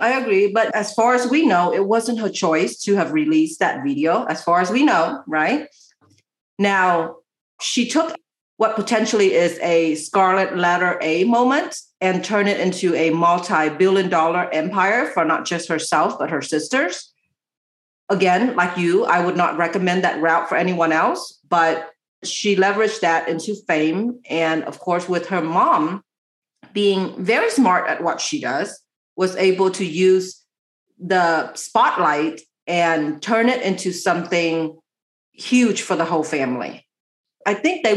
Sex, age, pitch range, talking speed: female, 40-59, 165-210 Hz, 155 wpm